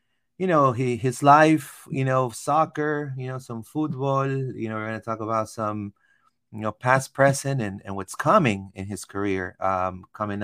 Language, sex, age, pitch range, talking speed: English, male, 30-49, 95-115 Hz, 190 wpm